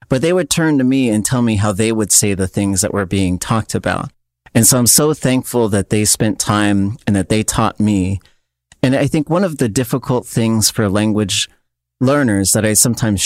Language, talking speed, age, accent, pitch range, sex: English, 215 wpm, 40-59, American, 100-120 Hz, male